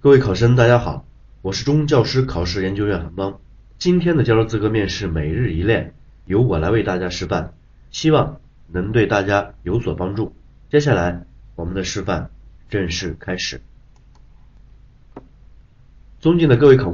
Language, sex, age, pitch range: Chinese, male, 30-49, 100-145 Hz